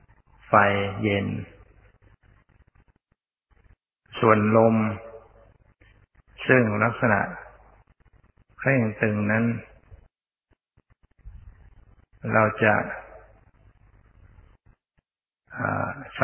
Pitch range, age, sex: 100-115 Hz, 20-39, male